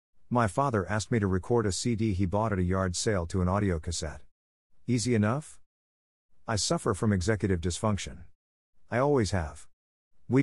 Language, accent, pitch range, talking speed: English, American, 85-115 Hz, 165 wpm